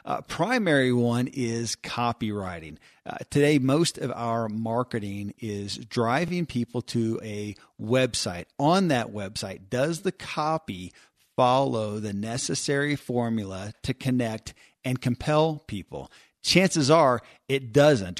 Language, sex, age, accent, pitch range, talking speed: English, male, 40-59, American, 115-135 Hz, 120 wpm